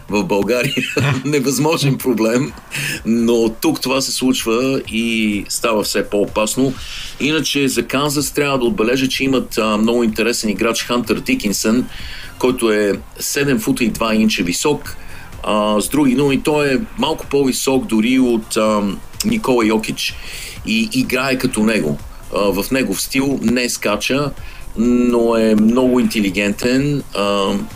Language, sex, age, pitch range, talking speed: Bulgarian, male, 50-69, 105-130 Hz, 140 wpm